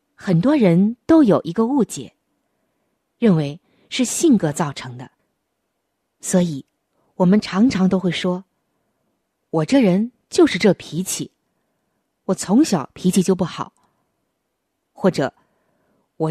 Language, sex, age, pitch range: Chinese, female, 20-39, 165-230 Hz